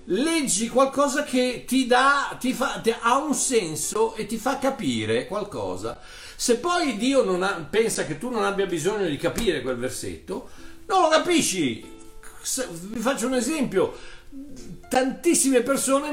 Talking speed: 155 wpm